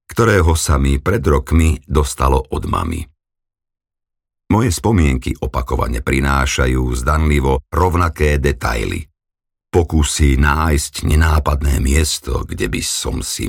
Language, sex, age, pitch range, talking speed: Slovak, male, 50-69, 75-95 Hz, 100 wpm